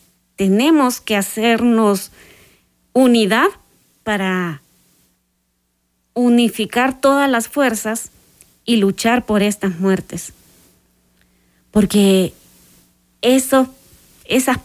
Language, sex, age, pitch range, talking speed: Spanish, female, 30-49, 195-245 Hz, 65 wpm